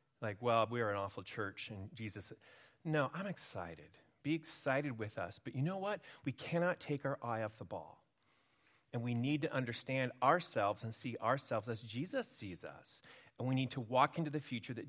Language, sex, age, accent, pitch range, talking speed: English, male, 40-59, American, 125-165 Hz, 200 wpm